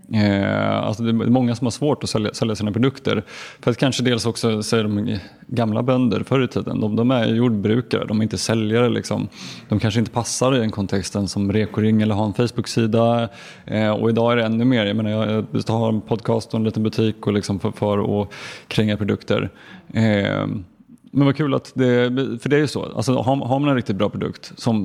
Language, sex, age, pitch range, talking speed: Swedish, male, 20-39, 110-125 Hz, 220 wpm